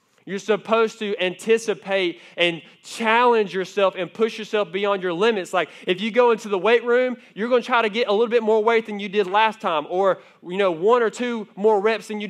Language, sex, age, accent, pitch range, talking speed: English, male, 20-39, American, 190-225 Hz, 230 wpm